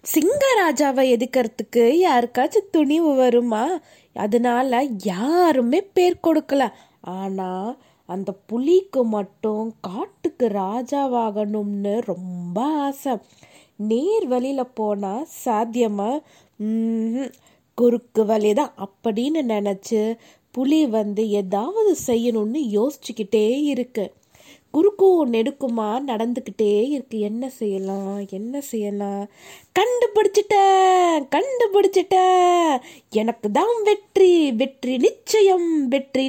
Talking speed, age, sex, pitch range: 75 wpm, 20-39, female, 220-310 Hz